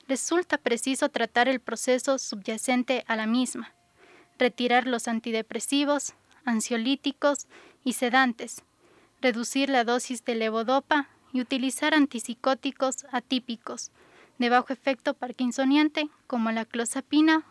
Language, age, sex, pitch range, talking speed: Hungarian, 20-39, female, 235-280 Hz, 105 wpm